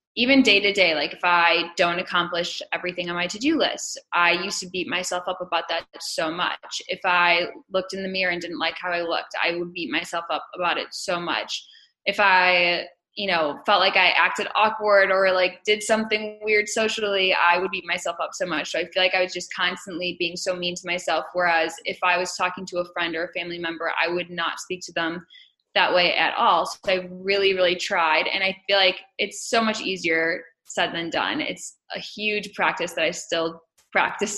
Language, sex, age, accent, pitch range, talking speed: English, female, 10-29, American, 170-195 Hz, 220 wpm